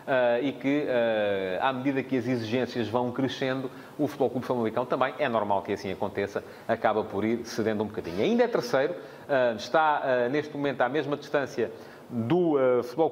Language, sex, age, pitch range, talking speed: Portuguese, male, 30-49, 110-145 Hz, 165 wpm